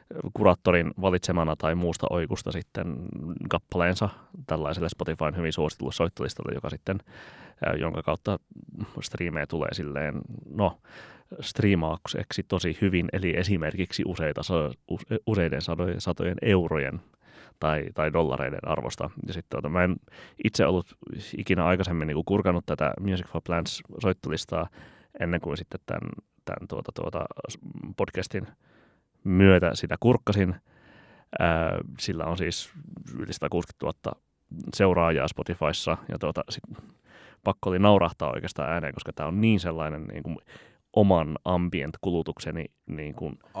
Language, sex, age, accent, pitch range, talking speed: Finnish, male, 30-49, native, 80-95 Hz, 115 wpm